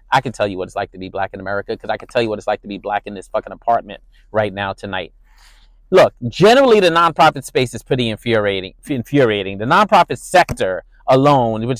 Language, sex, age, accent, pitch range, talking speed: English, male, 30-49, American, 115-140 Hz, 225 wpm